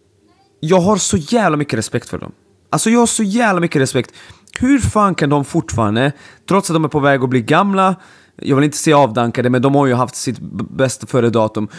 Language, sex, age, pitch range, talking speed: Swedish, male, 20-39, 125-180 Hz, 220 wpm